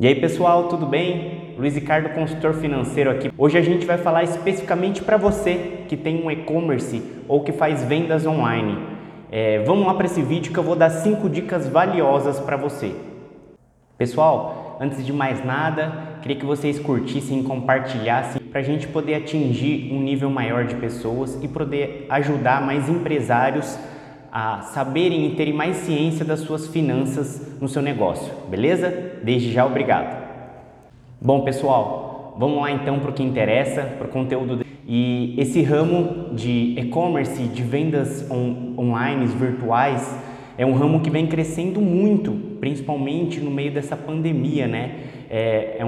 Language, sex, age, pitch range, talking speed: Portuguese, male, 20-39, 130-165 Hz, 160 wpm